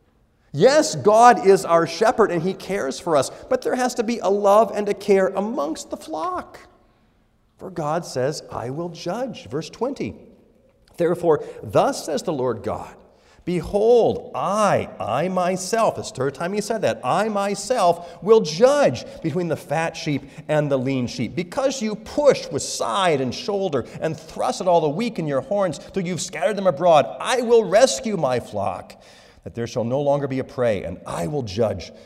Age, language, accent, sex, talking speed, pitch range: 40-59, English, American, male, 180 wpm, 150-230 Hz